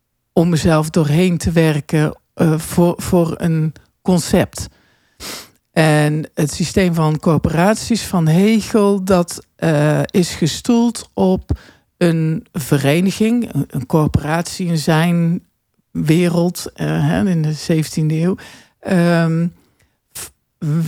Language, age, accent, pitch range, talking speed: Dutch, 50-69, Dutch, 150-195 Hz, 100 wpm